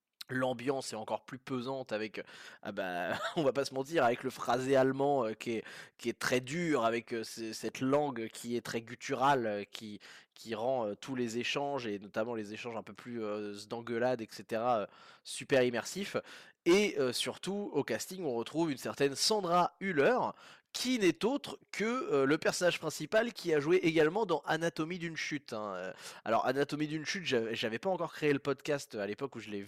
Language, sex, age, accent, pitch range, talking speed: French, male, 20-39, French, 115-145 Hz, 180 wpm